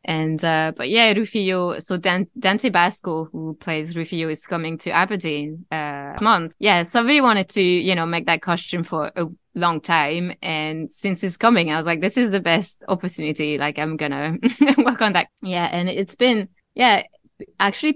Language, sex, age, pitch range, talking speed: English, female, 20-39, 160-200 Hz, 190 wpm